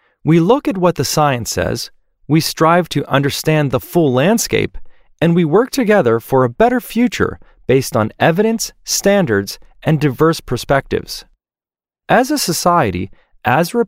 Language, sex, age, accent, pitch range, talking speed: English, male, 40-59, American, 135-200 Hz, 145 wpm